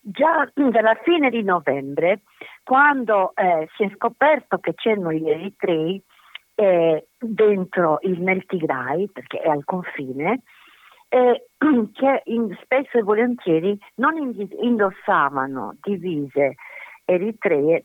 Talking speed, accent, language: 110 wpm, native, Italian